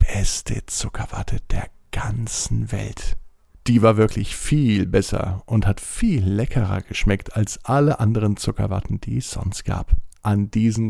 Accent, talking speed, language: German, 140 wpm, German